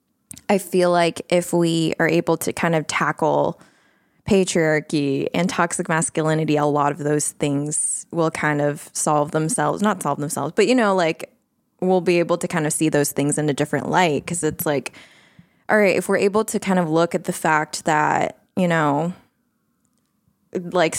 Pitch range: 150-185 Hz